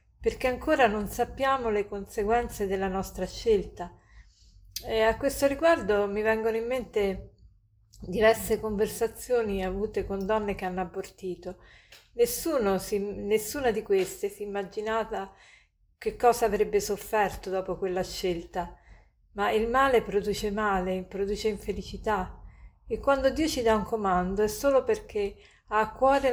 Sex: female